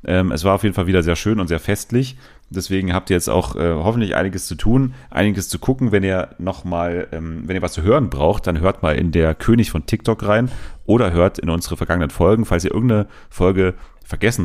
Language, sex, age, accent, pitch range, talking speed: German, male, 40-59, German, 85-105 Hz, 230 wpm